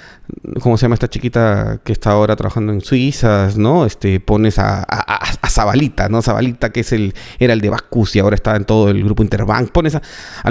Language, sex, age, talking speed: Spanish, male, 30-49, 200 wpm